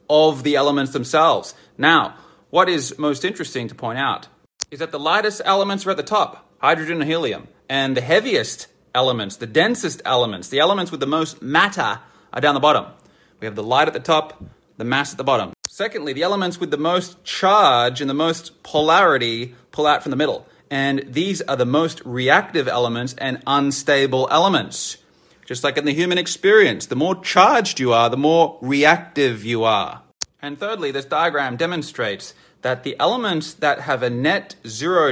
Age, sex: 30-49, male